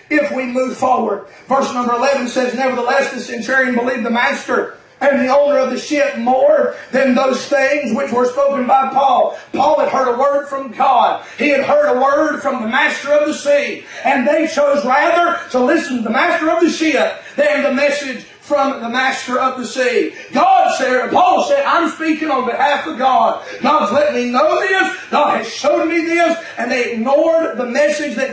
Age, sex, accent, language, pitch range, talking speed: 40-59, male, American, English, 240-290 Hz, 200 wpm